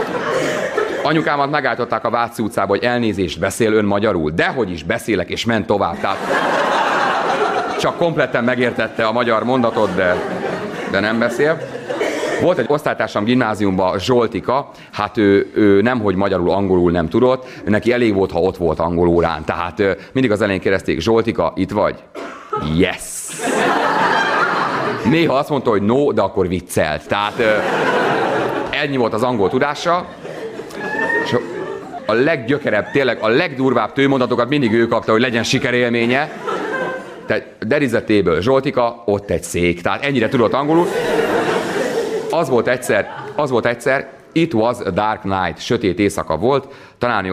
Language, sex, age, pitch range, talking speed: Hungarian, male, 30-49, 95-125 Hz, 135 wpm